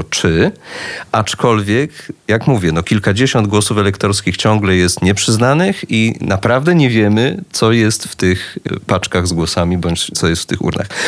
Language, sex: Polish, male